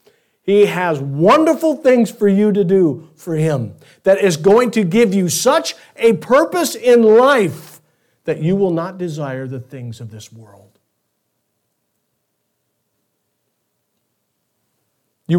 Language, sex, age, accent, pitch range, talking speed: English, male, 50-69, American, 135-220 Hz, 125 wpm